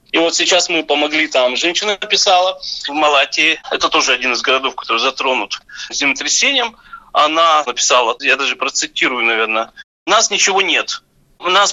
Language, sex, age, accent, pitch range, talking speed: Russian, male, 30-49, native, 160-210 Hz, 150 wpm